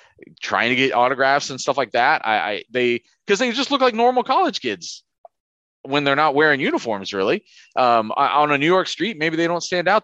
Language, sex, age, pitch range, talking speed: English, male, 30-49, 115-160 Hz, 215 wpm